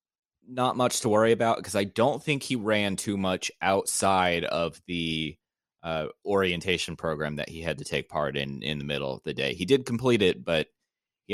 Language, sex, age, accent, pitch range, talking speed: English, male, 20-39, American, 75-95 Hz, 200 wpm